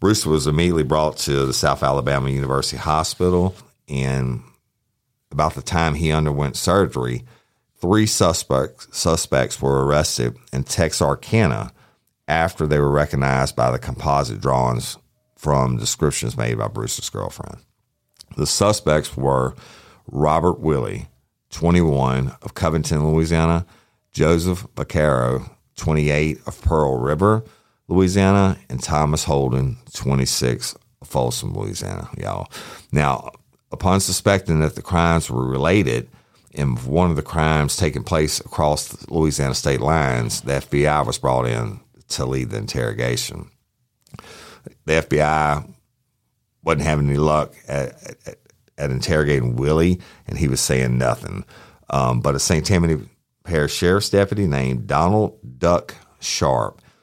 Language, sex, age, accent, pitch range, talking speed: English, male, 50-69, American, 65-85 Hz, 125 wpm